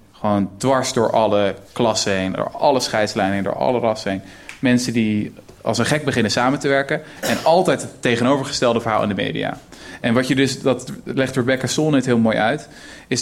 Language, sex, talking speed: Dutch, male, 190 wpm